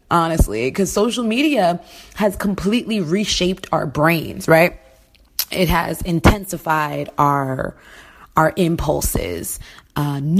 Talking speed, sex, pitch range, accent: 100 wpm, female, 150-210 Hz, American